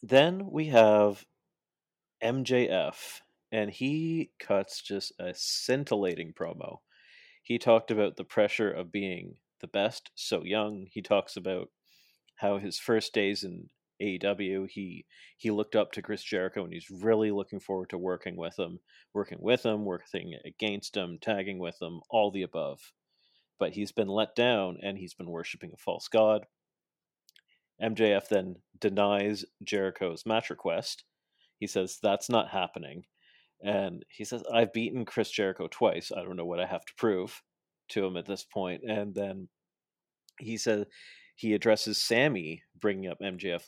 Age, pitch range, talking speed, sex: 40-59, 95-110 Hz, 155 wpm, male